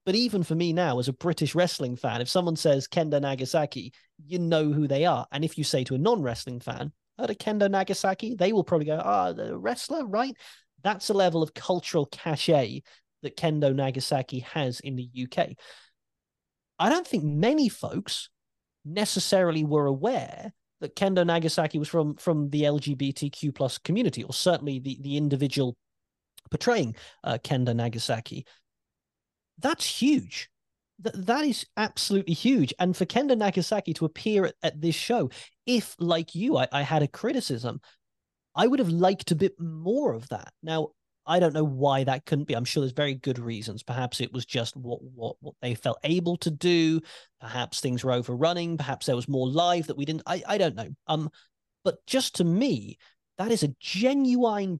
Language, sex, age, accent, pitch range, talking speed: English, male, 30-49, British, 135-185 Hz, 180 wpm